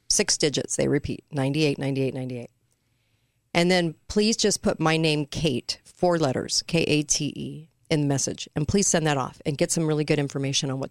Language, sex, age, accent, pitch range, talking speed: English, female, 40-59, American, 135-165 Hz, 185 wpm